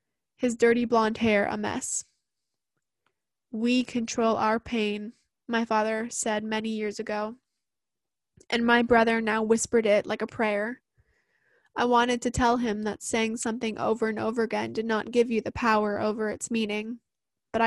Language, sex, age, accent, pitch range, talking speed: English, female, 20-39, American, 220-245 Hz, 160 wpm